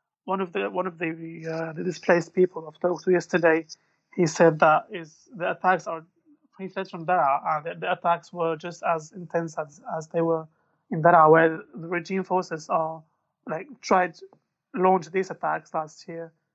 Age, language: 30-49, English